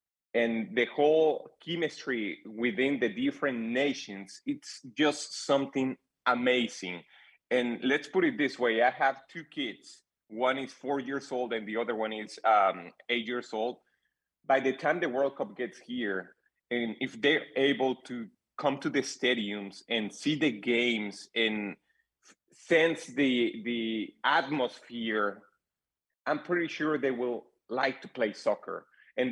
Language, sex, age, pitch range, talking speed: English, male, 30-49, 115-145 Hz, 145 wpm